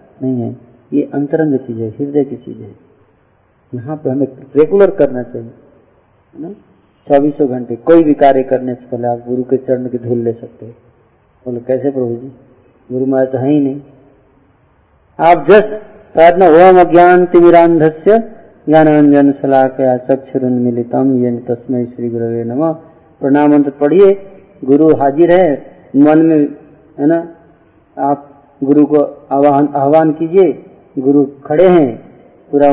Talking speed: 70 wpm